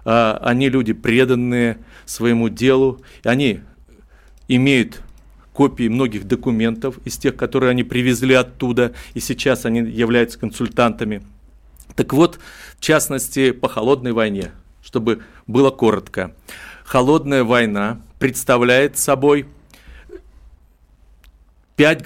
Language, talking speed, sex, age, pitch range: Russian, 100 wpm, male, 40-59, 110-140 Hz